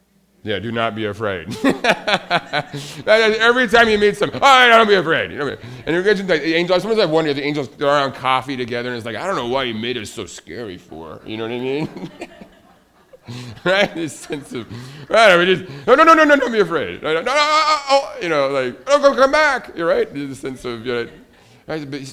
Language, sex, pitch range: English, male, 115-170 Hz